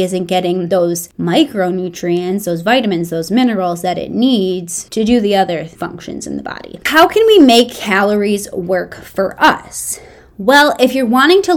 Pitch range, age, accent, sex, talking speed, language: 185-260 Hz, 20-39, American, female, 165 wpm, English